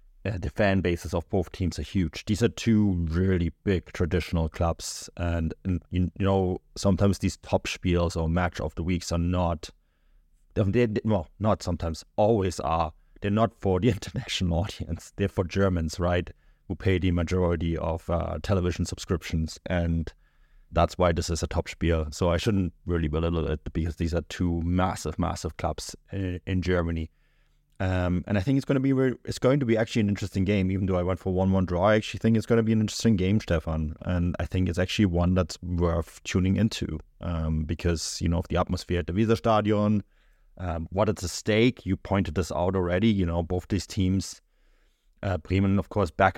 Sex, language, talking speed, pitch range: male, English, 200 wpm, 85-100 Hz